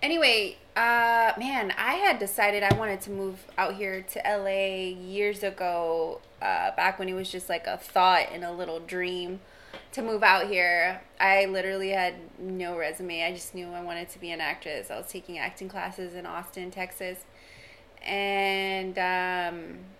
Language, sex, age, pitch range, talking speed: English, female, 20-39, 180-205 Hz, 170 wpm